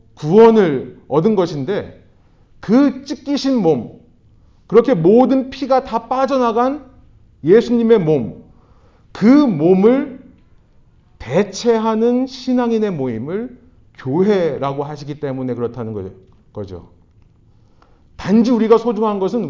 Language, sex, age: Korean, male, 40-59